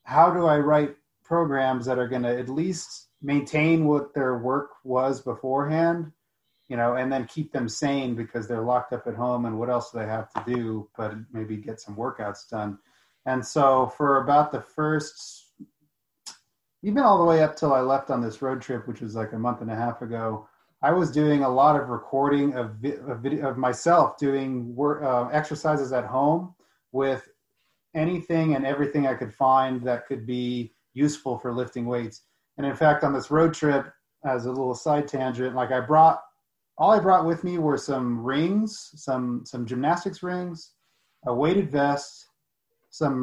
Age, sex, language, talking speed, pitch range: 30-49, male, English, 185 wpm, 125-150 Hz